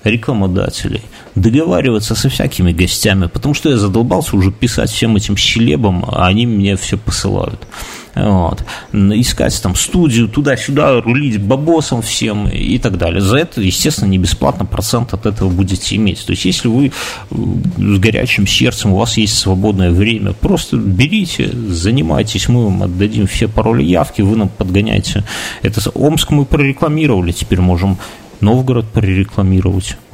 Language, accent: Russian, native